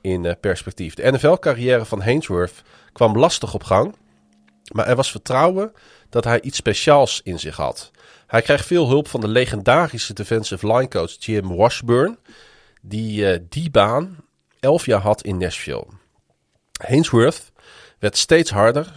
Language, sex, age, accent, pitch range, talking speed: Dutch, male, 40-59, Dutch, 100-130 Hz, 150 wpm